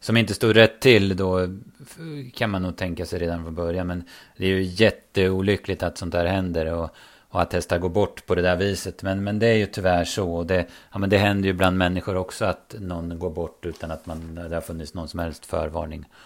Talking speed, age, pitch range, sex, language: 235 wpm, 30-49, 90-110 Hz, male, Swedish